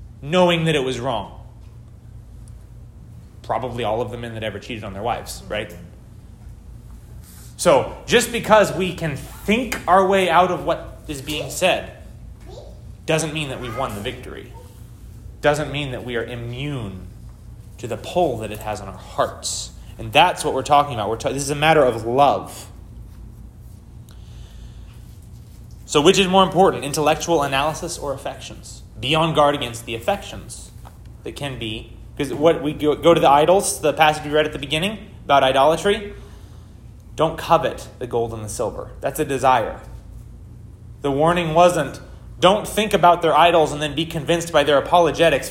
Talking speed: 165 wpm